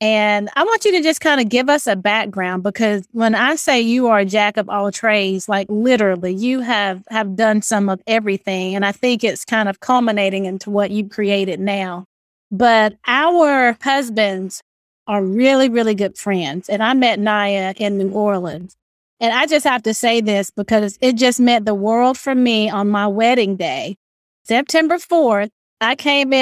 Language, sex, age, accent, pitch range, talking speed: English, female, 30-49, American, 210-265 Hz, 185 wpm